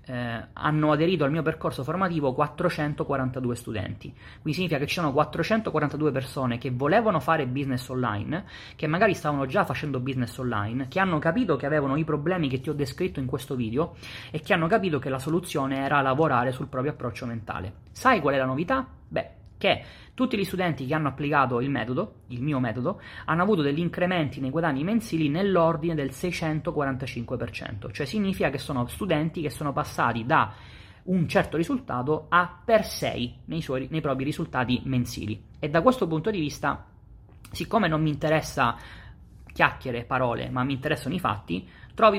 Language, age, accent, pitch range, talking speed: Italian, 30-49, native, 130-160 Hz, 170 wpm